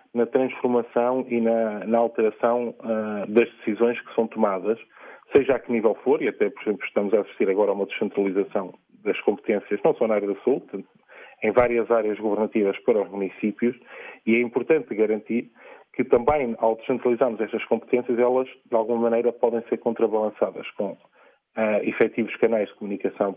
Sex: male